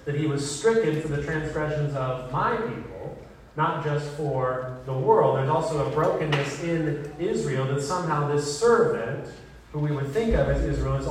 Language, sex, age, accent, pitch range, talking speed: English, male, 30-49, American, 140-170 Hz, 175 wpm